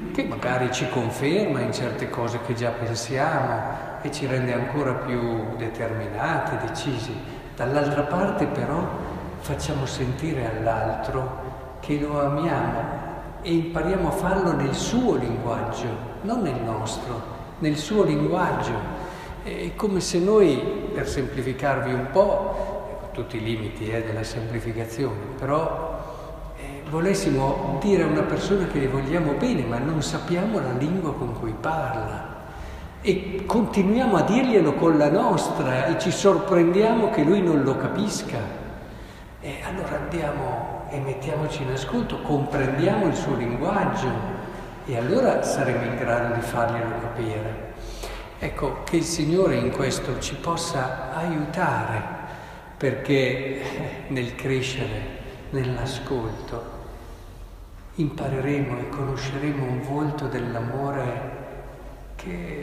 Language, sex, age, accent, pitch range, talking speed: Italian, male, 50-69, native, 115-155 Hz, 120 wpm